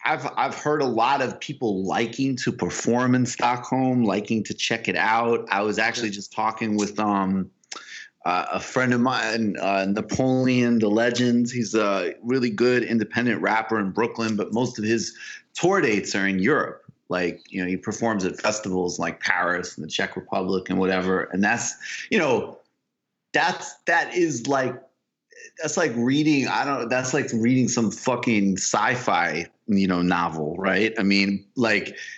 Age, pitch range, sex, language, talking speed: 30-49, 95-120 Hz, male, English, 170 wpm